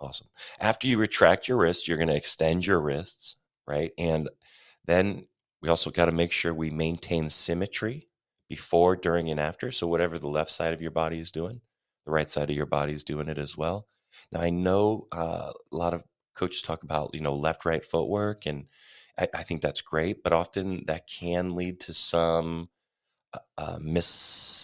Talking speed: 195 wpm